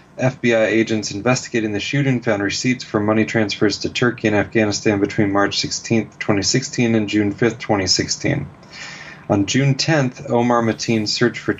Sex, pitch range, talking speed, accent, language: male, 105-125 Hz, 150 wpm, American, English